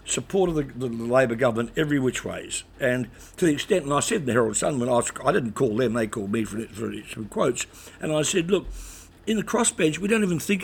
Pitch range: 115-155 Hz